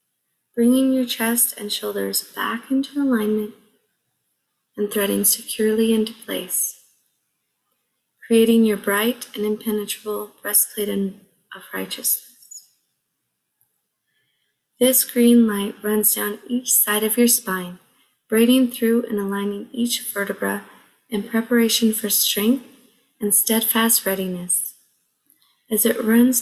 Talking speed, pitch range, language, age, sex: 105 wpm, 205-235 Hz, English, 20-39, female